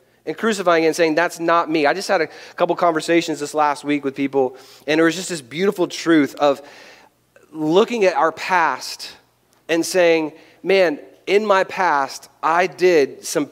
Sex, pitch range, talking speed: male, 145-190 Hz, 175 wpm